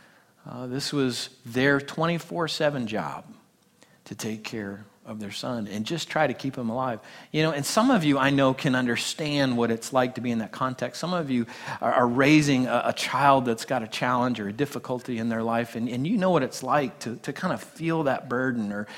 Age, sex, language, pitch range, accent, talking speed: 40-59, male, English, 120-155 Hz, American, 225 wpm